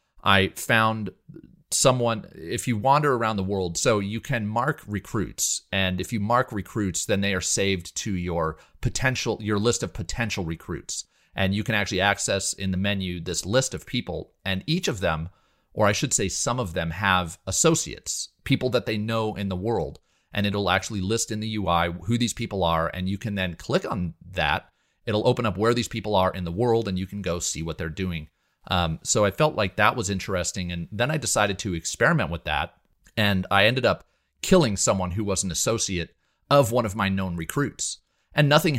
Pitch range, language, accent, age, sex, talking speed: 95-115 Hz, English, American, 30-49, male, 205 wpm